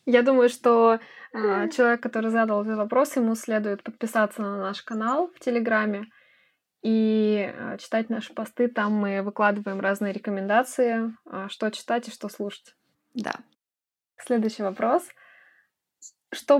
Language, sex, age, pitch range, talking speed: Russian, female, 20-39, 200-240 Hz, 125 wpm